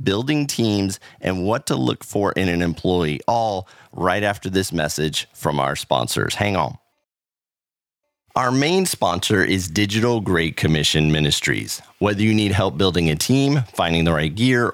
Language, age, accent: English, 30-49, American